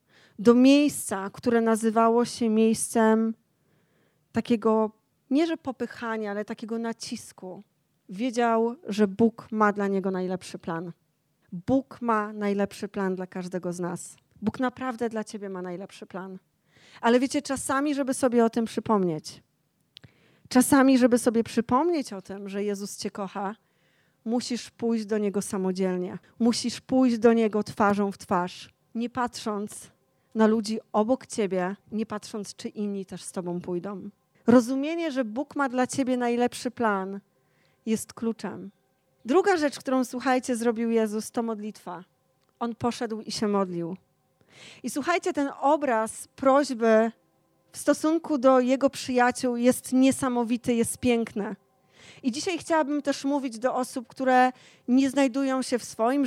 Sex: female